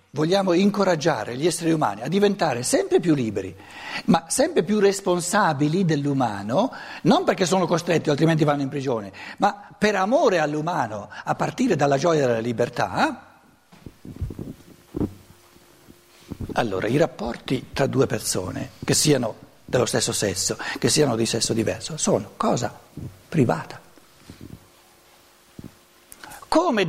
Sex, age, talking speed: male, 60-79, 120 wpm